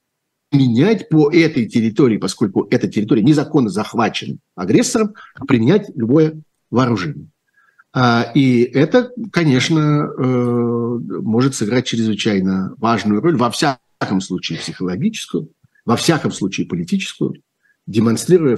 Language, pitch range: Russian, 115-175 Hz